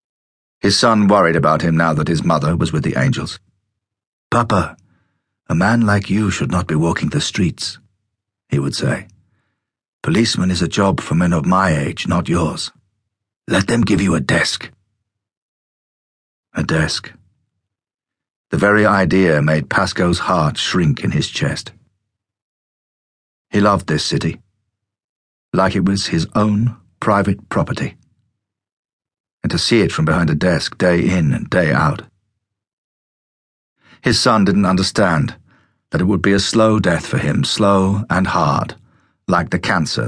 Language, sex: English, male